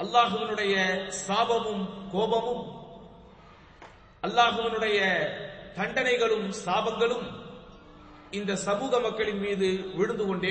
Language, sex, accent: English, male, Indian